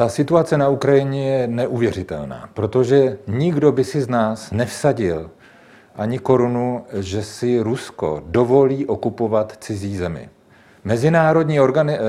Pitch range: 105-135 Hz